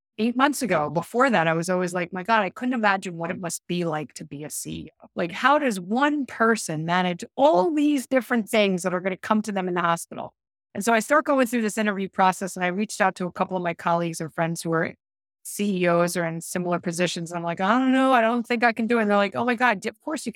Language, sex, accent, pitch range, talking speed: English, female, American, 175-235 Hz, 270 wpm